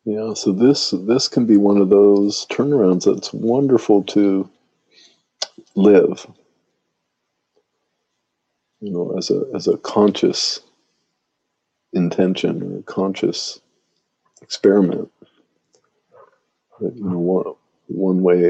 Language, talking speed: English, 100 wpm